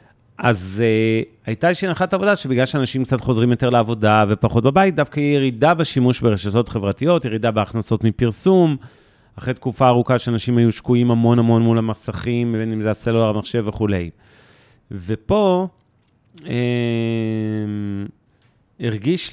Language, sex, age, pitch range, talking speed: Hebrew, male, 40-59, 110-125 Hz, 125 wpm